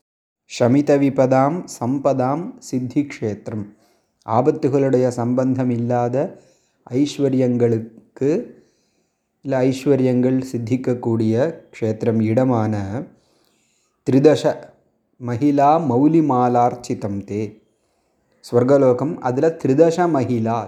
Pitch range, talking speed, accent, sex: 115-140 Hz, 60 wpm, native, male